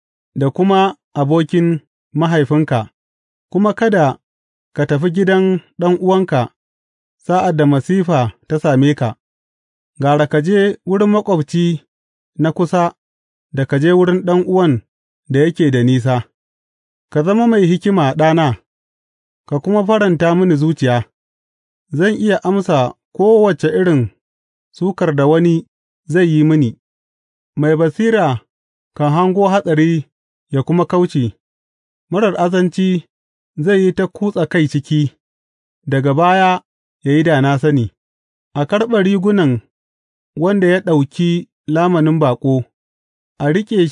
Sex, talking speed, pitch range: male, 95 wpm, 130-180 Hz